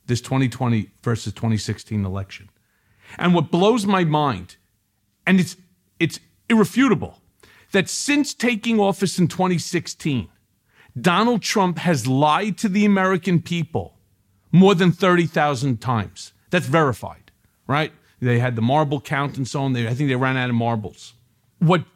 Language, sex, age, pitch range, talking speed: English, male, 50-69, 115-175 Hz, 140 wpm